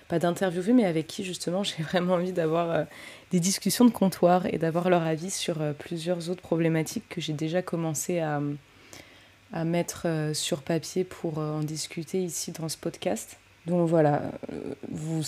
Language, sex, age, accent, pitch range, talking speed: French, female, 20-39, French, 155-175 Hz, 180 wpm